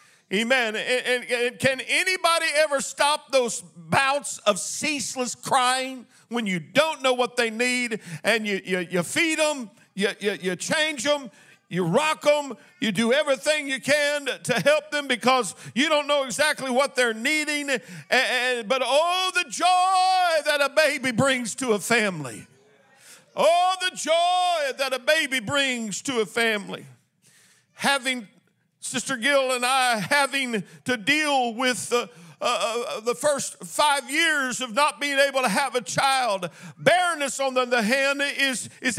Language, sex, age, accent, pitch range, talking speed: English, male, 50-69, American, 230-290 Hz, 160 wpm